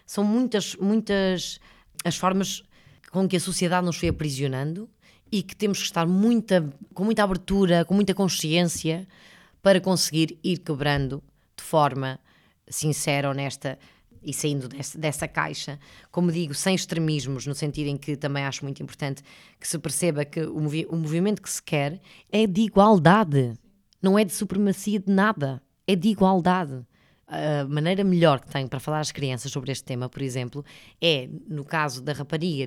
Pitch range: 145-195 Hz